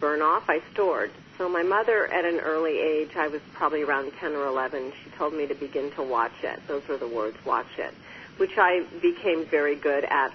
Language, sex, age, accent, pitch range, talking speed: English, female, 40-59, American, 145-170 Hz, 220 wpm